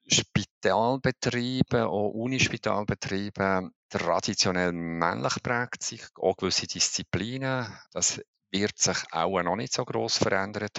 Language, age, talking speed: German, 50-69, 105 wpm